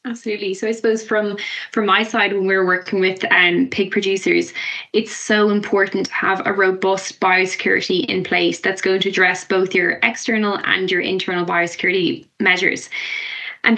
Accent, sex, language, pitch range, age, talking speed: Irish, female, English, 190-215 Hz, 20-39, 170 wpm